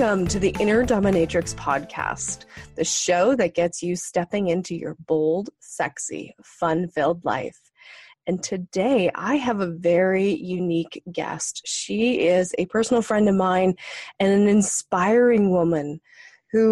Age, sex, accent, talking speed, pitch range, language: 30-49, female, American, 140 wpm, 170-220 Hz, English